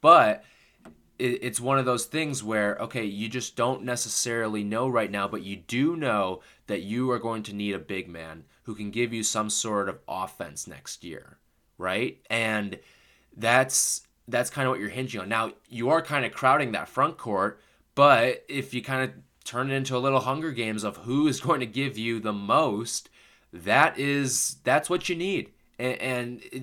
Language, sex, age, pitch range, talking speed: English, male, 20-39, 110-135 Hz, 190 wpm